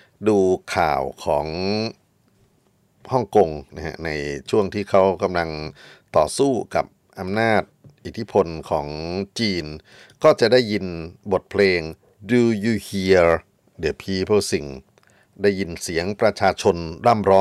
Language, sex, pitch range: Thai, male, 80-105 Hz